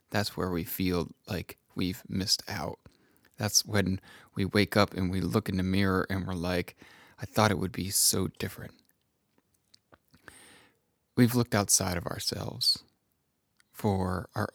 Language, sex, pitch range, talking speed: English, male, 95-115 Hz, 150 wpm